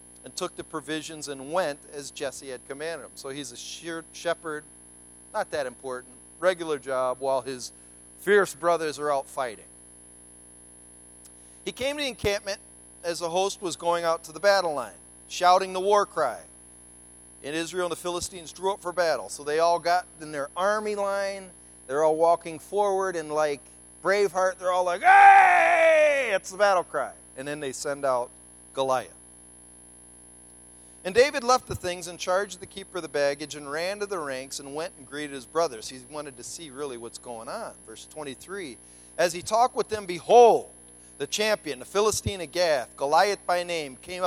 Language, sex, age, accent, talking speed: English, male, 40-59, American, 180 wpm